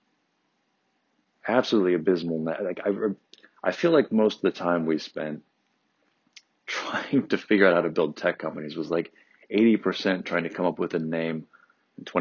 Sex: male